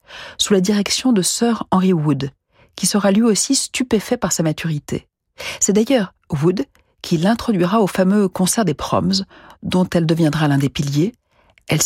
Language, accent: French, French